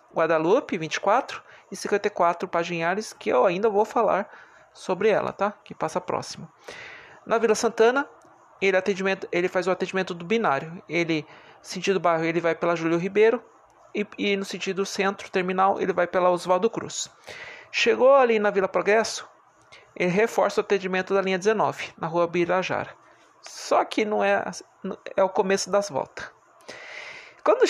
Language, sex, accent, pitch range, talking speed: Portuguese, male, Brazilian, 175-220 Hz, 155 wpm